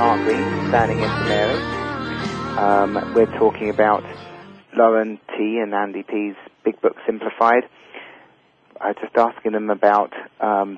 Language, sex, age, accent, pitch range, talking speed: English, male, 30-49, British, 100-115 Hz, 110 wpm